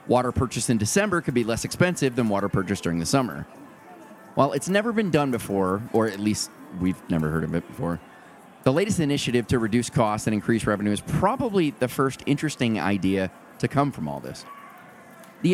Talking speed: 195 wpm